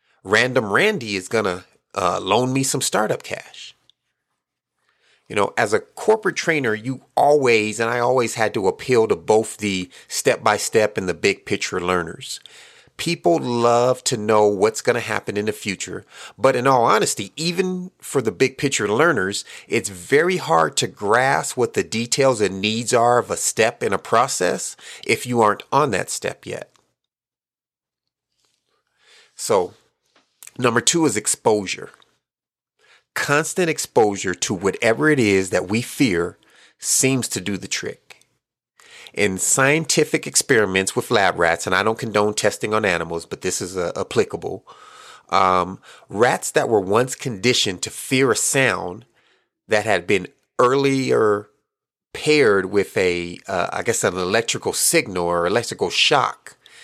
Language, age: English, 30-49